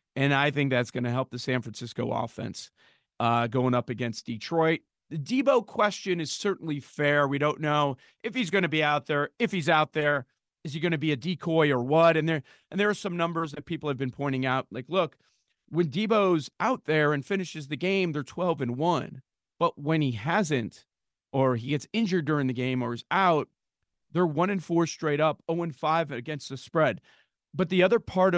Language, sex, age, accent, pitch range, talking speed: English, male, 40-59, American, 130-170 Hz, 215 wpm